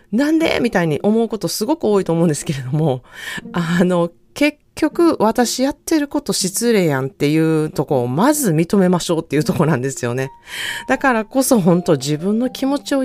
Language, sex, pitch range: Japanese, female, 145-240 Hz